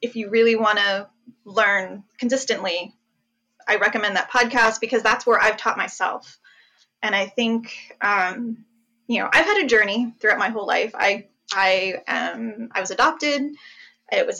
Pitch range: 210-265 Hz